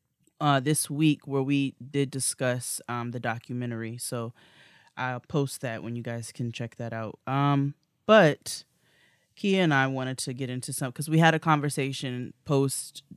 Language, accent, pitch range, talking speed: English, American, 125-145 Hz, 170 wpm